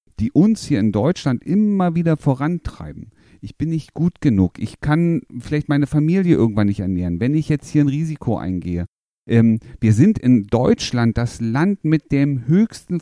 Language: German